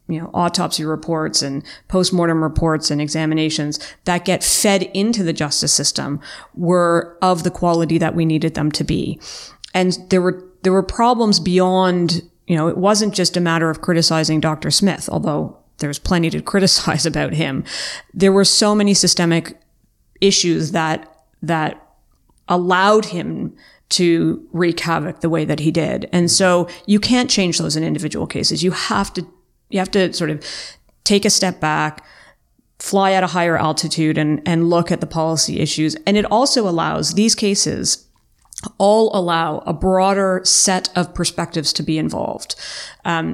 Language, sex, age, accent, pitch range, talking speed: English, female, 30-49, American, 160-195 Hz, 165 wpm